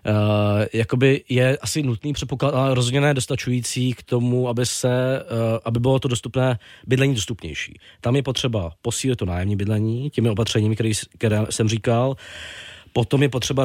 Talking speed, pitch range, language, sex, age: 145 wpm, 110-125 Hz, Czech, male, 20-39